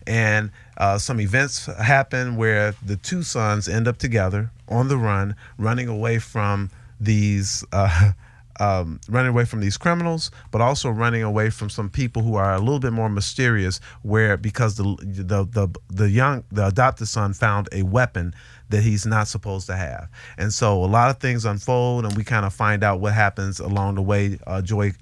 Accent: American